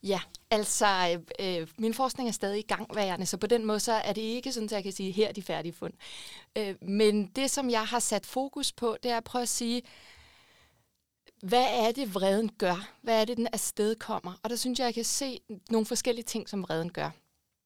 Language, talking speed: Danish, 225 wpm